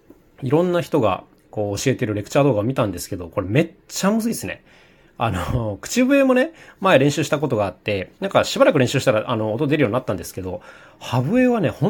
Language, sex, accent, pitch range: Japanese, male, native, 105-170 Hz